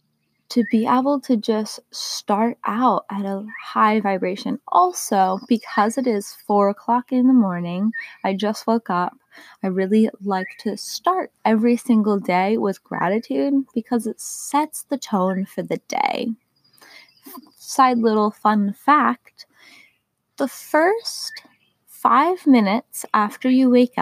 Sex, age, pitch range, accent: female, 20-39, 195-255 Hz, American